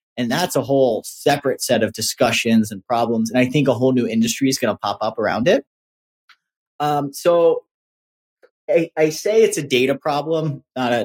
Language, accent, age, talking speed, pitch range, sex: English, American, 30-49, 190 wpm, 120-155 Hz, male